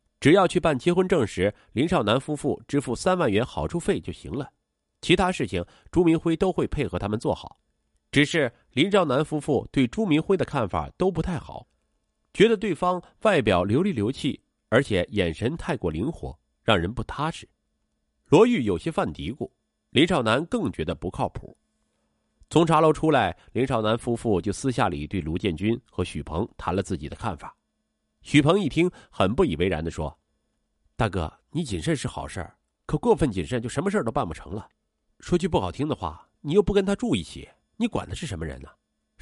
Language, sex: Chinese, male